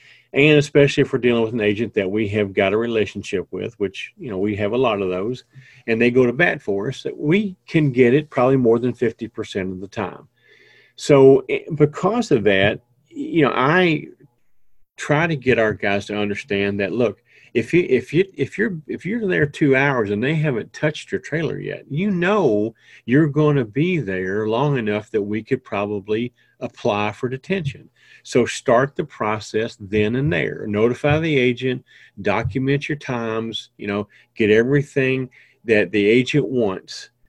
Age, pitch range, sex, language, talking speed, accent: 40-59, 110-150 Hz, male, English, 180 wpm, American